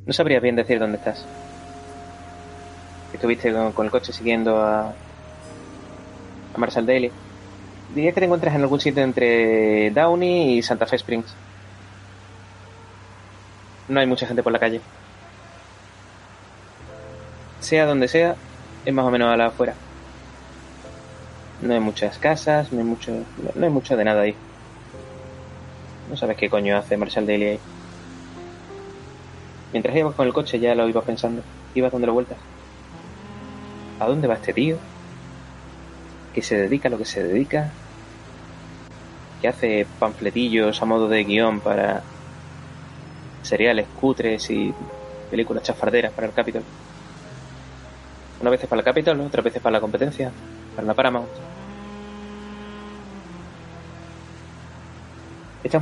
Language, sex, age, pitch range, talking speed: Spanish, male, 20-39, 95-125 Hz, 135 wpm